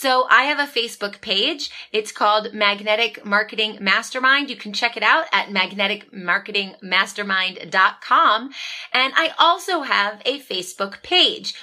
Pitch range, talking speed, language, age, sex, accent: 195-270 Hz, 130 wpm, English, 30-49, female, American